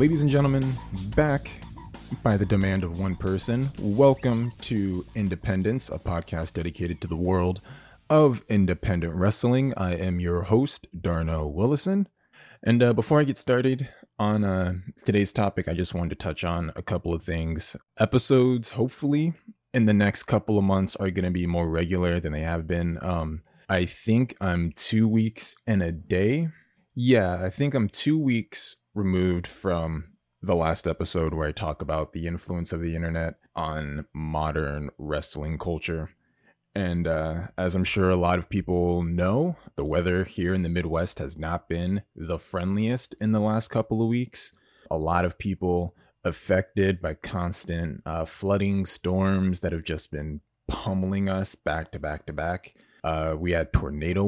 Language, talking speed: English, 165 wpm